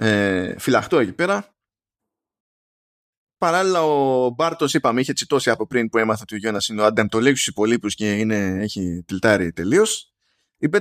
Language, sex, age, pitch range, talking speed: Greek, male, 20-39, 105-160 Hz, 145 wpm